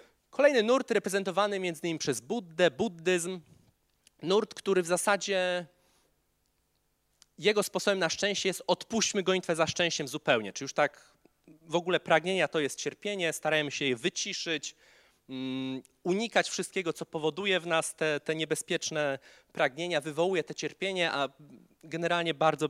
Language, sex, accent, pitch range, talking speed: Polish, male, native, 140-185 Hz, 135 wpm